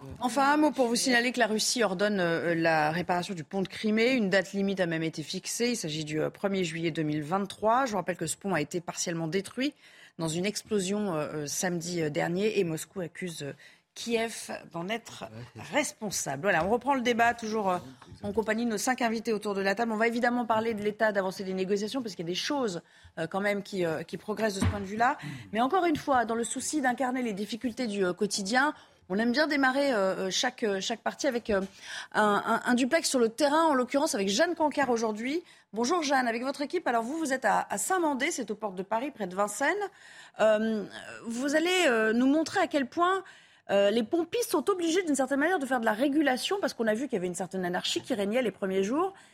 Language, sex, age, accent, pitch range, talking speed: French, female, 30-49, French, 190-270 Hz, 220 wpm